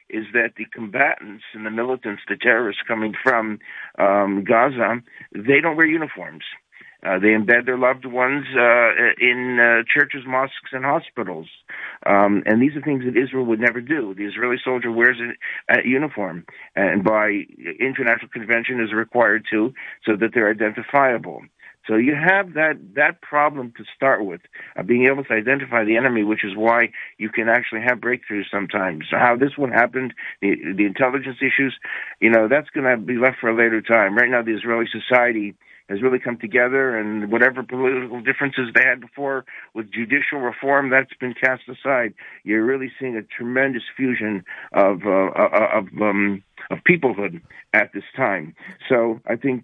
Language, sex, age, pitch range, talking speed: English, male, 50-69, 110-130 Hz, 175 wpm